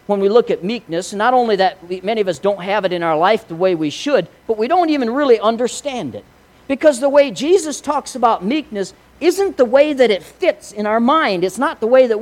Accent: American